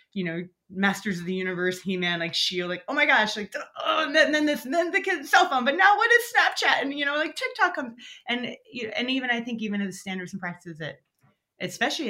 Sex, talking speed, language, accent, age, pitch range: female, 260 wpm, English, American, 30-49, 160-230 Hz